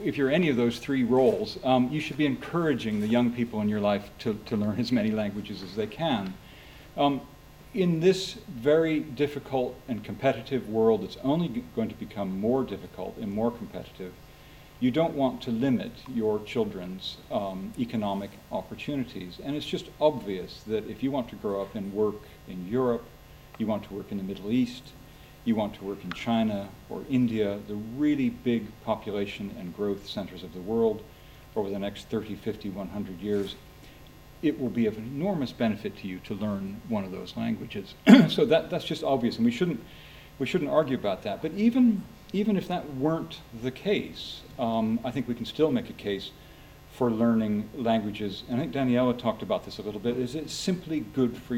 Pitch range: 105-145 Hz